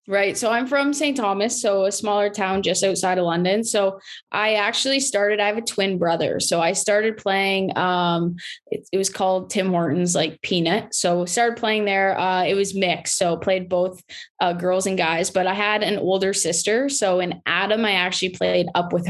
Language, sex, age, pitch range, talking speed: English, female, 10-29, 175-200 Hz, 205 wpm